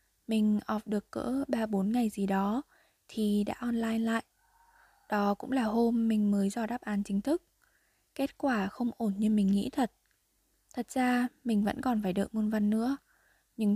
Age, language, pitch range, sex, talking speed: 10-29, Vietnamese, 205-245 Hz, female, 185 wpm